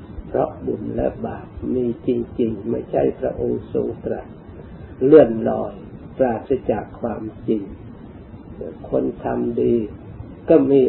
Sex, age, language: male, 50-69, Thai